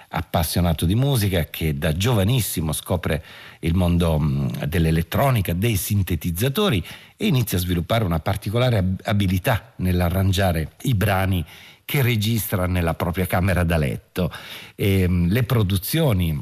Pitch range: 85-110 Hz